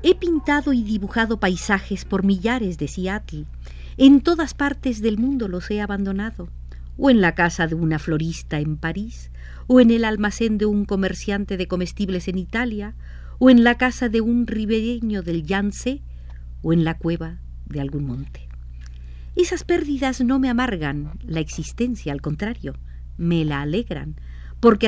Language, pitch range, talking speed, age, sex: Spanish, 140-220 Hz, 160 wpm, 50-69, female